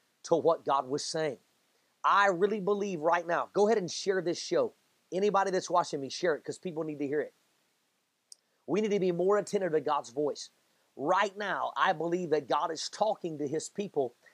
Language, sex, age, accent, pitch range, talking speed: English, male, 40-59, American, 150-200 Hz, 200 wpm